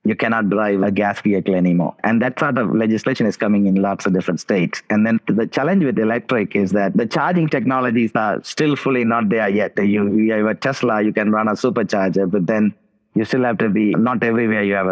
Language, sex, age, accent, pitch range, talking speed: English, male, 30-49, Indian, 100-115 Hz, 230 wpm